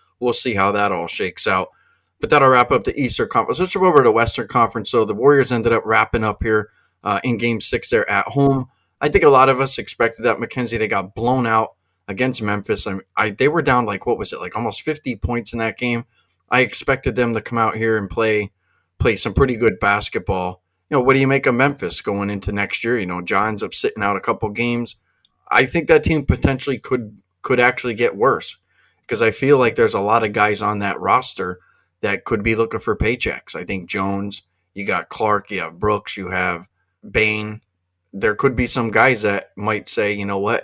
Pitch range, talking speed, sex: 100-120 Hz, 225 wpm, male